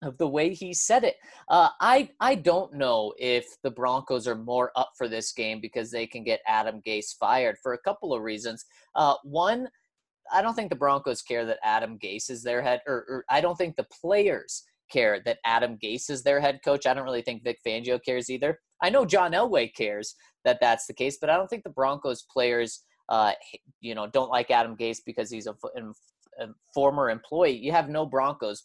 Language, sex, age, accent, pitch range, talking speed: English, male, 30-49, American, 120-180 Hz, 215 wpm